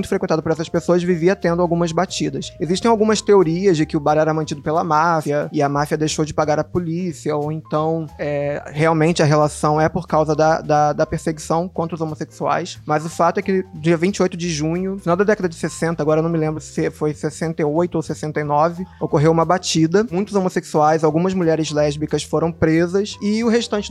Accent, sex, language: Brazilian, male, Portuguese